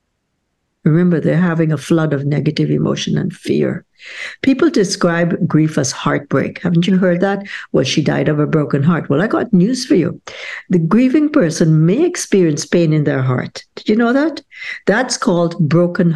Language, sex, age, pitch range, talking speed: English, female, 60-79, 155-205 Hz, 180 wpm